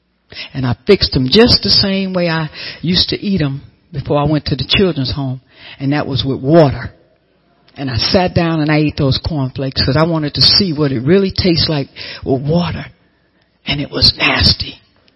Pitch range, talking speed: 135-175 Hz, 200 wpm